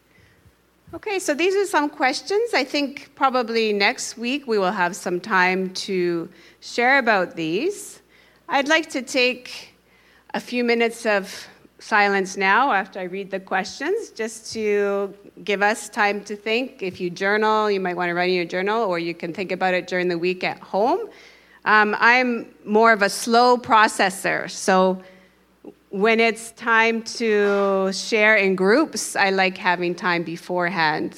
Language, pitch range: English, 180-225 Hz